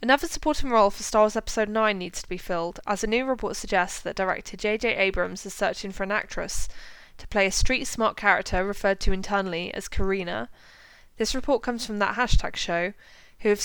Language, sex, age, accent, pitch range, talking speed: English, female, 20-39, British, 190-225 Hz, 200 wpm